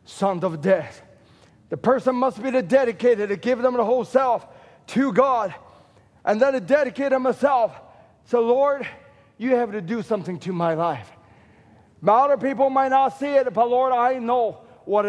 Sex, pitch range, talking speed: male, 220-265 Hz, 185 wpm